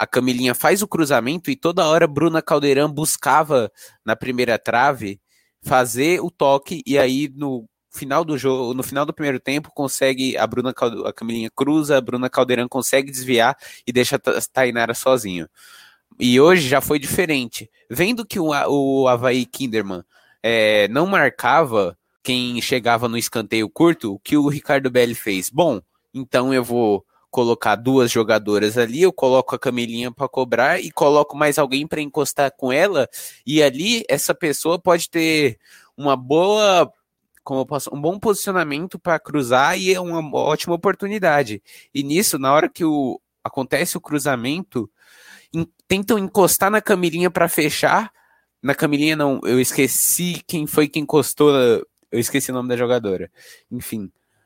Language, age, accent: Portuguese, 20-39, Brazilian